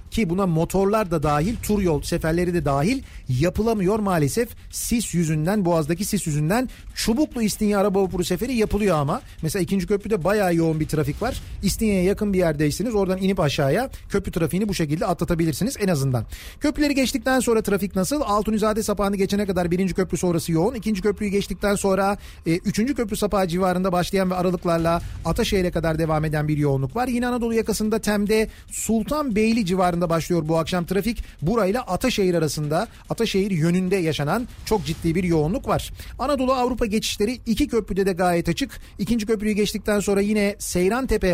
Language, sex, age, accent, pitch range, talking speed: Turkish, male, 40-59, native, 170-215 Hz, 165 wpm